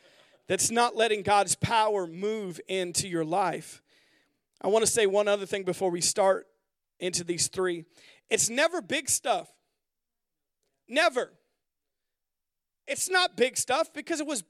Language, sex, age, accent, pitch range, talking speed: English, male, 40-59, American, 185-300 Hz, 135 wpm